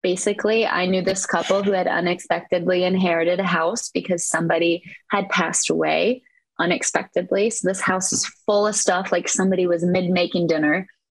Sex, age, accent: female, 20-39, American